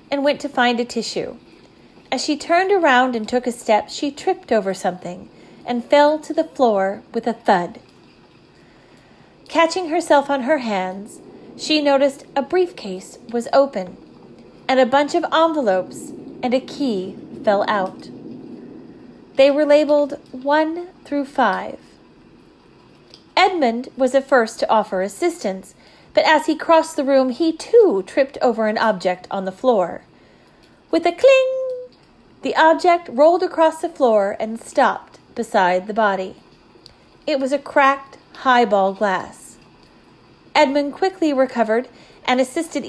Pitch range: 230-310 Hz